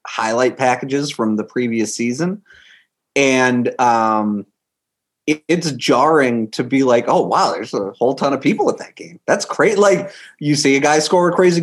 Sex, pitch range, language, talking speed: male, 110-150 Hz, English, 180 wpm